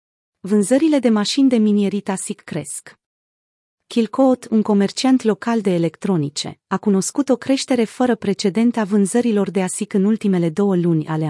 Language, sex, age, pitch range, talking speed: Romanian, female, 30-49, 175-225 Hz, 150 wpm